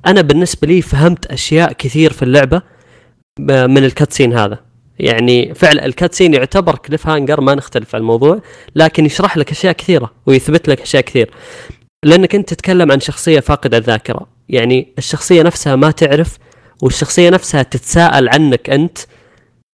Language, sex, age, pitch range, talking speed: Arabic, female, 20-39, 120-160 Hz, 140 wpm